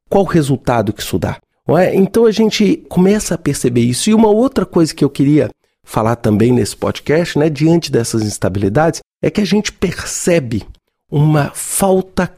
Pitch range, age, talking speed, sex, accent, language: 125-170 Hz, 40-59, 175 wpm, male, Brazilian, Portuguese